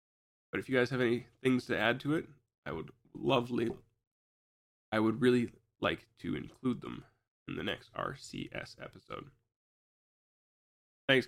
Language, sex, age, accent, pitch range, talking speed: English, male, 20-39, American, 115-145 Hz, 145 wpm